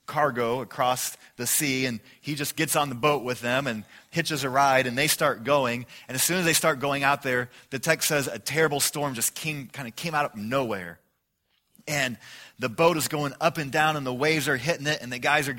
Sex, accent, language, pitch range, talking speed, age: male, American, English, 125-160 Hz, 240 wpm, 30-49